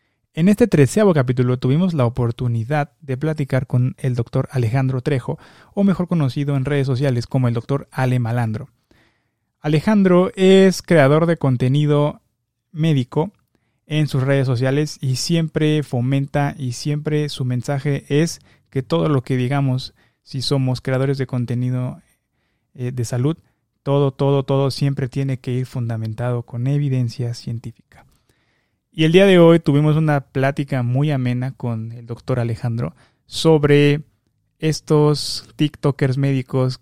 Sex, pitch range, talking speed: male, 125-145 Hz, 135 wpm